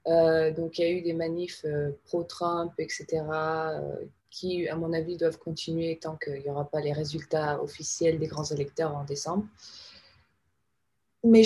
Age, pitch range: 20-39, 155-190 Hz